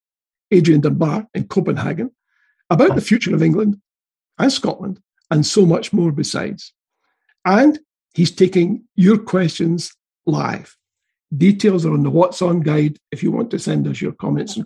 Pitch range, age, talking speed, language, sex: 155-215 Hz, 60-79, 155 wpm, English, male